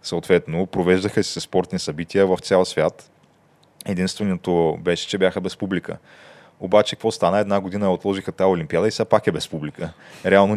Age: 20-39